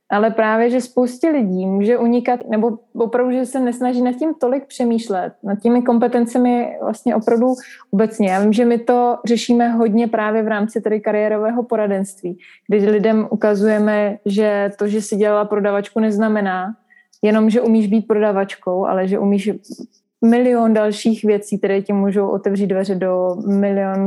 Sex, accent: female, native